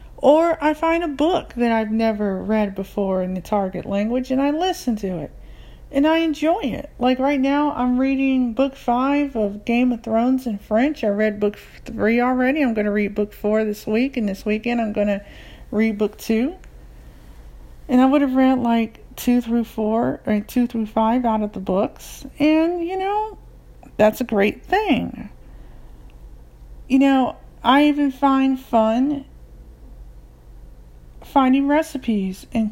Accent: American